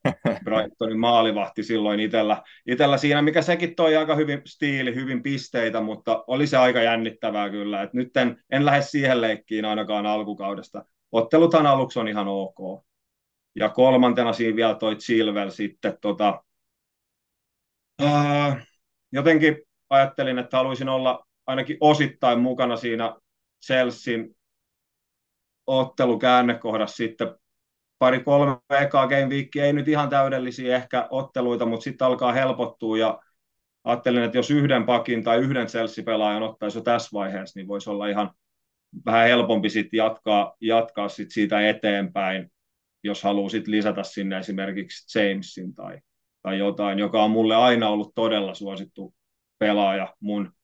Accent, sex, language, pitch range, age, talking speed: native, male, Finnish, 105-130 Hz, 30-49, 135 wpm